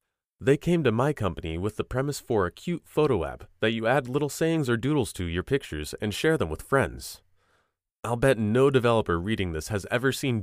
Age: 30-49